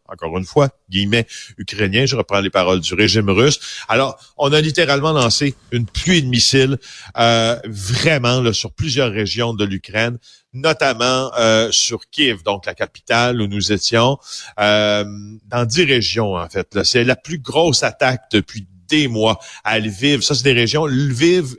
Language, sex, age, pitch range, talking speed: French, male, 50-69, 110-135 Hz, 170 wpm